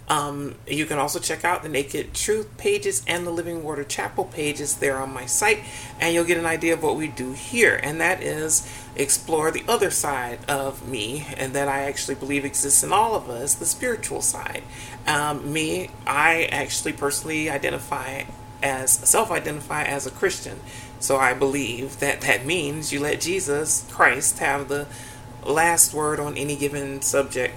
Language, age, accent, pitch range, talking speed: English, 30-49, American, 125-155 Hz, 175 wpm